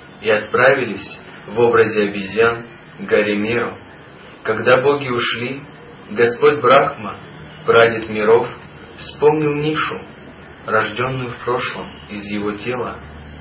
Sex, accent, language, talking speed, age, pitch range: male, native, Russian, 95 wpm, 30-49, 100-125 Hz